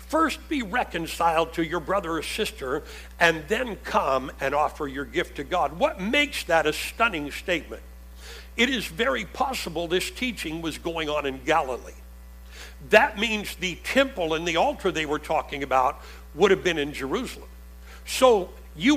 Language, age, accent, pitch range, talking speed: English, 60-79, American, 160-250 Hz, 165 wpm